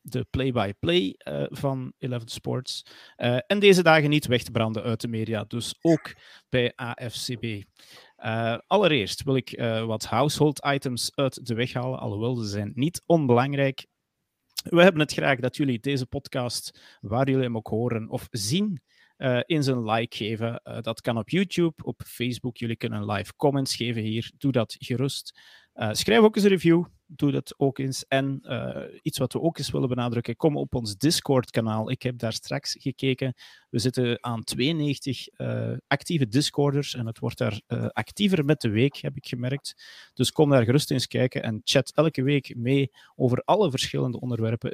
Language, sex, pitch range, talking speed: Dutch, male, 115-140 Hz, 180 wpm